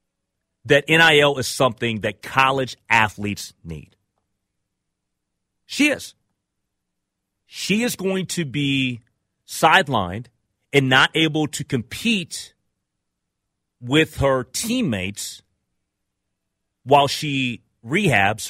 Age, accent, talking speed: 30-49, American, 90 wpm